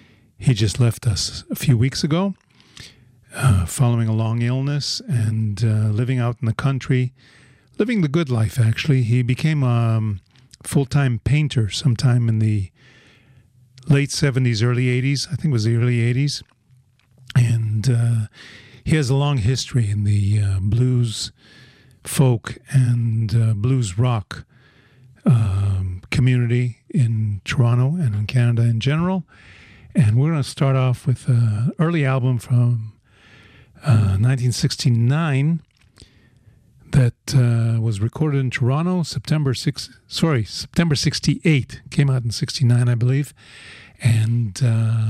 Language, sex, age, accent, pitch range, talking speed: English, male, 50-69, American, 115-135 Hz, 135 wpm